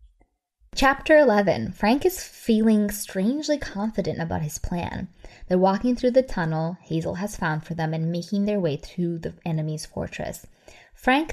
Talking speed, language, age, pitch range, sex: 155 wpm, English, 20-39, 155-190 Hz, female